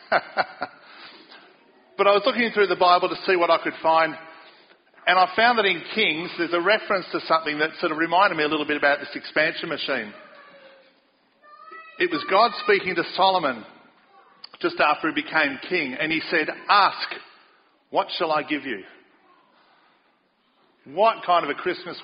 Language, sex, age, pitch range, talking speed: English, male, 50-69, 160-255 Hz, 165 wpm